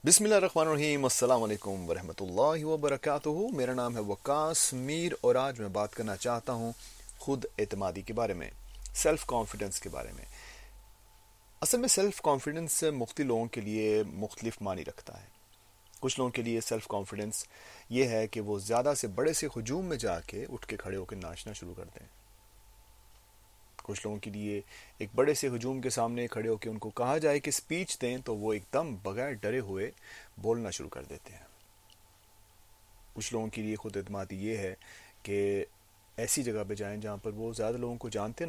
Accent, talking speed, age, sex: Indian, 180 wpm, 30-49, male